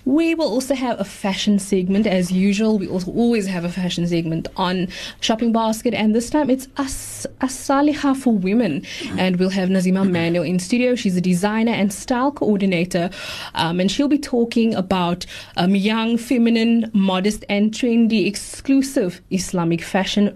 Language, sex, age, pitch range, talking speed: English, female, 20-39, 185-250 Hz, 160 wpm